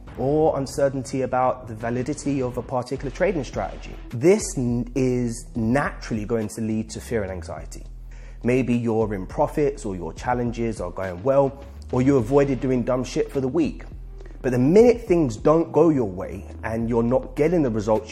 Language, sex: English, male